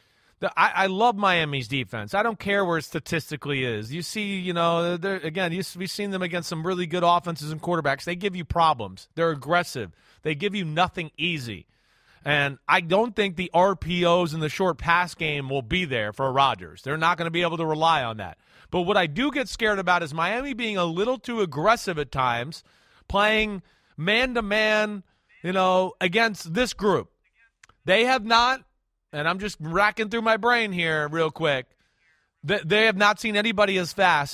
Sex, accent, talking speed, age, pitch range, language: male, American, 185 wpm, 30-49, 140-195 Hz, English